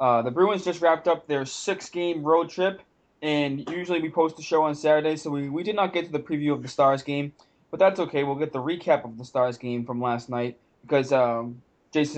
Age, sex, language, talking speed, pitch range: 20-39, male, English, 235 wpm, 130-155 Hz